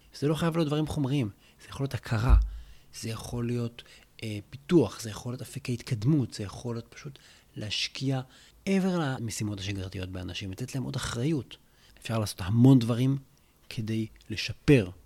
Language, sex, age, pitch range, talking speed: Hebrew, male, 30-49, 95-125 Hz, 155 wpm